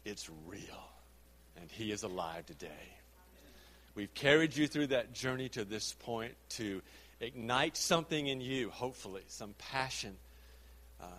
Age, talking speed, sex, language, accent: 50-69, 135 wpm, male, English, American